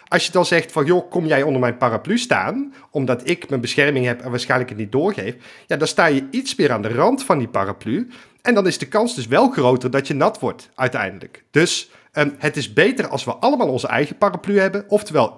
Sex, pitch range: male, 125-175 Hz